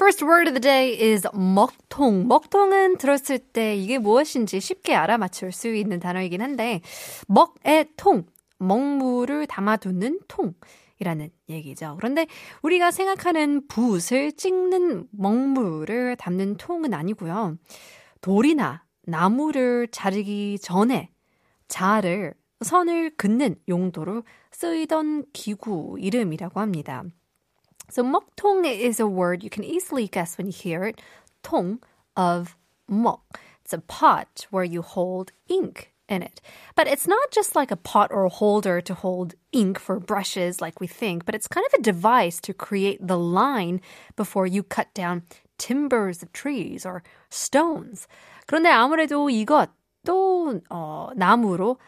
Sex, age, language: female, 20-39, Korean